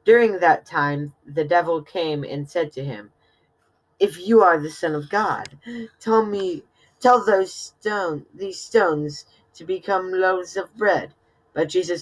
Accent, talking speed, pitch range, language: American, 155 wpm, 150-195 Hz, English